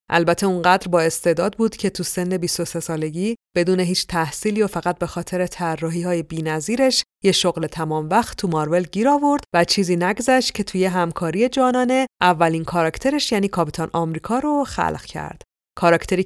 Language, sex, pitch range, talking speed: Persian, female, 165-190 Hz, 160 wpm